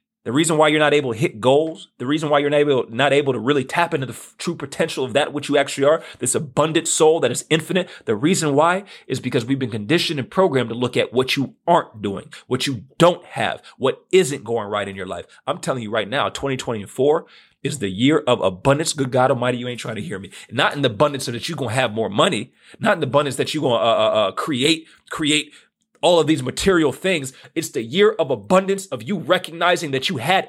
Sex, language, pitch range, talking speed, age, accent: male, English, 135-170 Hz, 240 wpm, 30-49, American